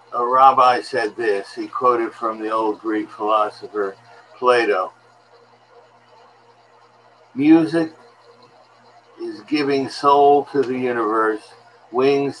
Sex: male